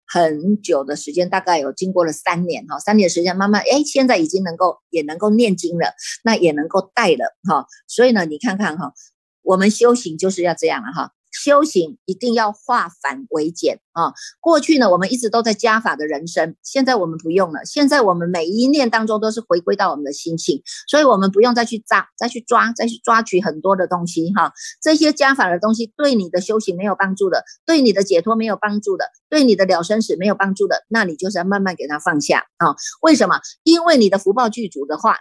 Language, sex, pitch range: Chinese, female, 180-240 Hz